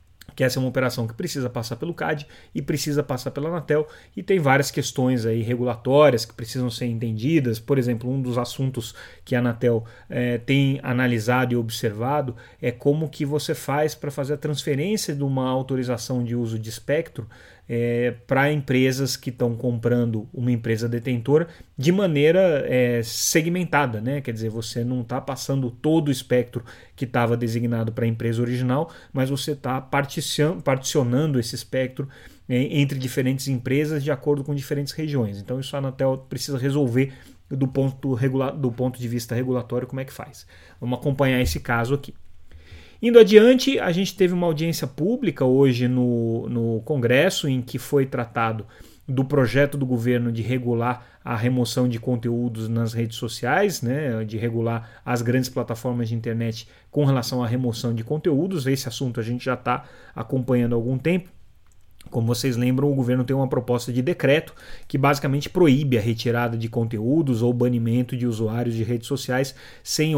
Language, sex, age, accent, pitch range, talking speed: Portuguese, male, 30-49, Brazilian, 120-140 Hz, 165 wpm